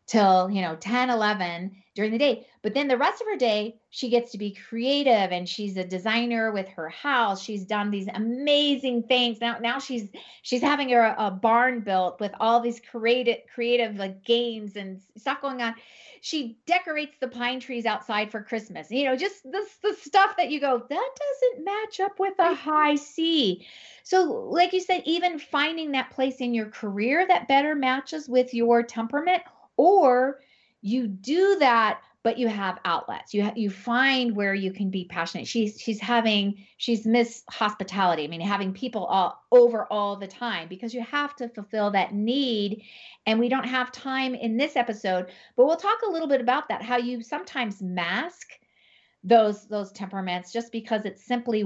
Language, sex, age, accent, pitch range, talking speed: English, female, 40-59, American, 205-275 Hz, 185 wpm